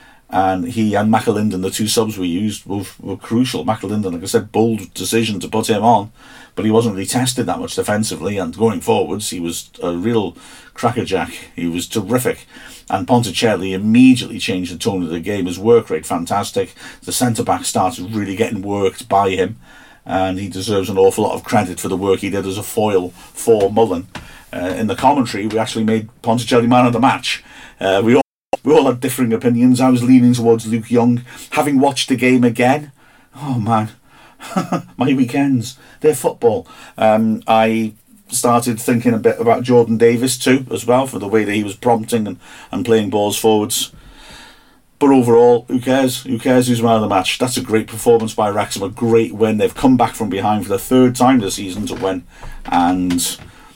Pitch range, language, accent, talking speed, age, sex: 100-125 Hz, English, British, 195 wpm, 50-69, male